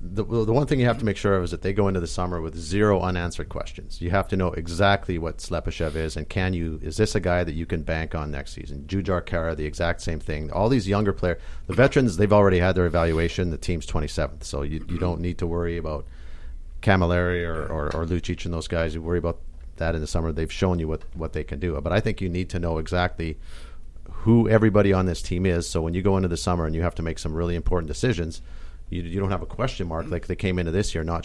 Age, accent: 50-69, American